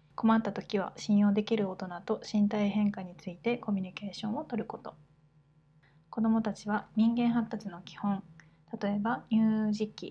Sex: female